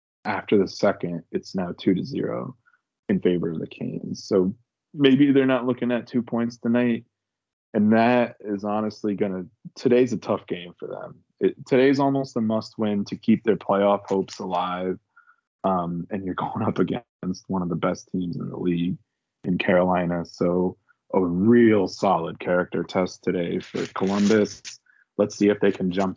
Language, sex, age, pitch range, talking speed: English, male, 20-39, 90-110 Hz, 170 wpm